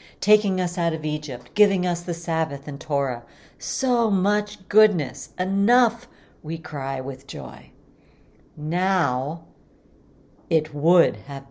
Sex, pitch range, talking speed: female, 155-195 Hz, 120 wpm